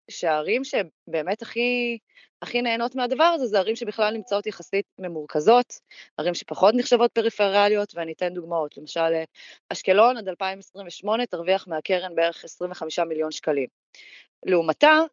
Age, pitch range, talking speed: 20-39, 160-220 Hz, 125 wpm